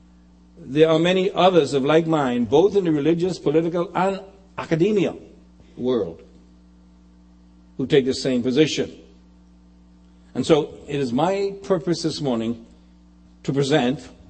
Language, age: English, 60-79